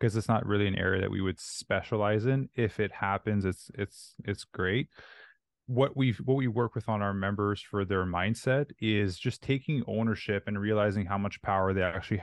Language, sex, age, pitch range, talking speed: English, male, 20-39, 100-115 Hz, 200 wpm